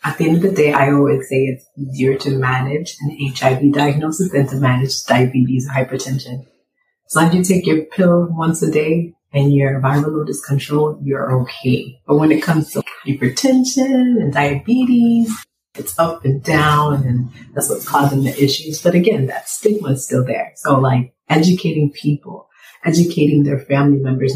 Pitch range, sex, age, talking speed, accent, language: 135-160 Hz, female, 30-49, 175 wpm, American, English